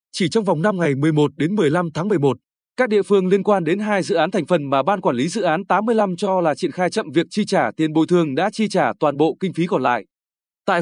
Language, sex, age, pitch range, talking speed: Vietnamese, male, 20-39, 155-200 Hz, 270 wpm